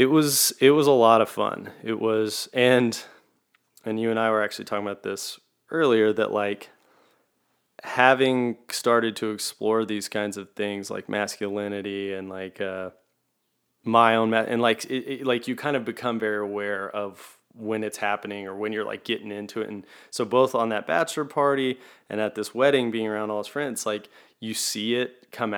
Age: 20-39